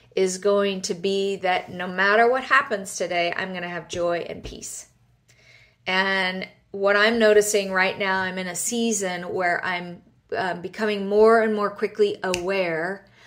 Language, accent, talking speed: English, American, 165 wpm